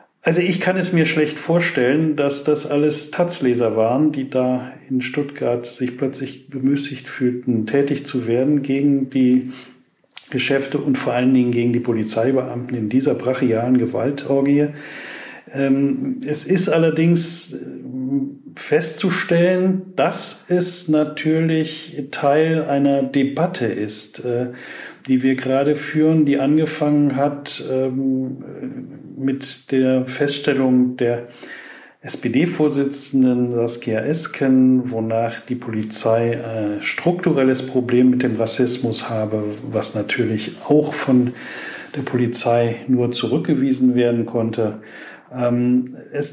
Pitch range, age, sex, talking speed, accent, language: 125-150 Hz, 40-59, male, 110 wpm, German, German